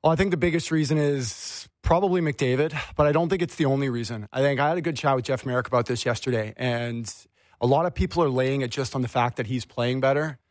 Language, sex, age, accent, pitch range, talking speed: English, male, 30-49, American, 115-140 Hz, 265 wpm